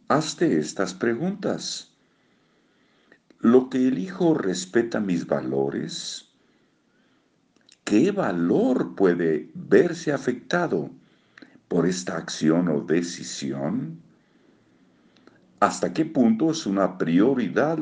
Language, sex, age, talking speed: Spanish, male, 50-69, 85 wpm